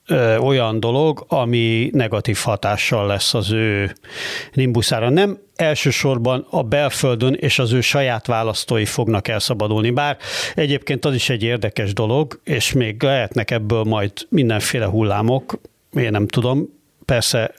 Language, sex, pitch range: Hungarian, male, 115-135 Hz